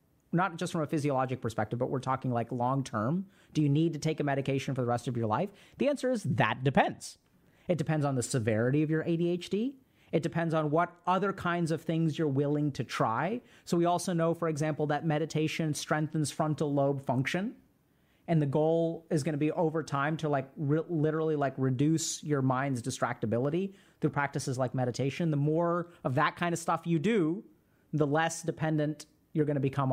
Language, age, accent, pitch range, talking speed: English, 30-49, American, 140-175 Hz, 200 wpm